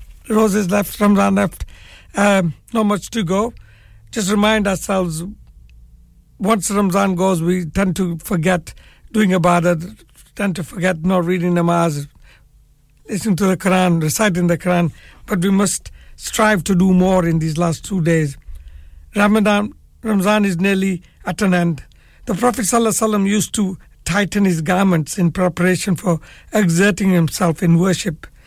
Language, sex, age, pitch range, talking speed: English, male, 60-79, 160-200 Hz, 150 wpm